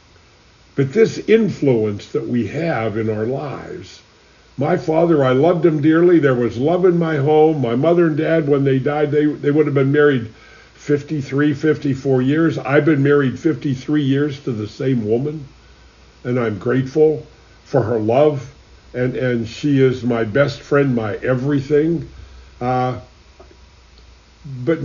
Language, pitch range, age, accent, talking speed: English, 120-155 Hz, 60-79, American, 150 wpm